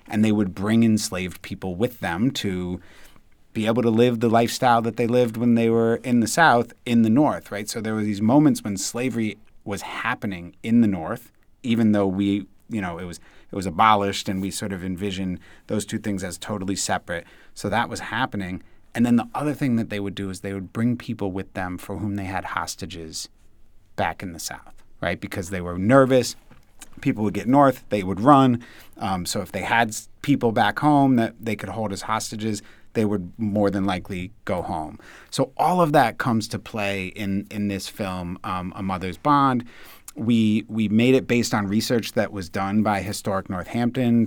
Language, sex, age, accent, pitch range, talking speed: English, male, 30-49, American, 95-115 Hz, 205 wpm